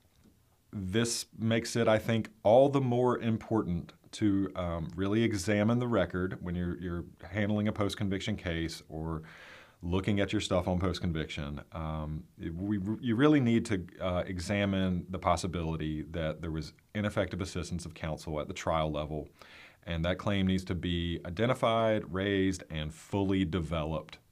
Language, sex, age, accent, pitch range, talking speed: English, male, 30-49, American, 85-105 Hz, 150 wpm